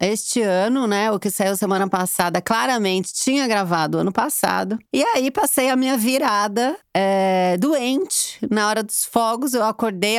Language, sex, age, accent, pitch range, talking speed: Portuguese, female, 30-49, Brazilian, 175-225 Hz, 160 wpm